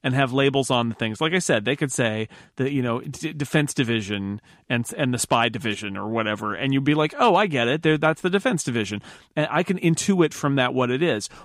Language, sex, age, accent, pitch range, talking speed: English, male, 30-49, American, 120-155 Hz, 245 wpm